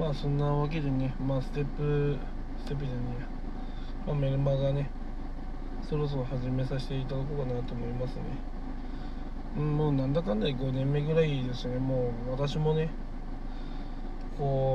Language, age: Japanese, 20-39